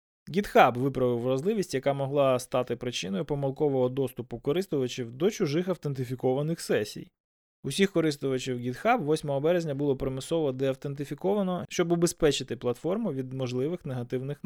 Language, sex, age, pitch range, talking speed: Ukrainian, male, 20-39, 125-155 Hz, 115 wpm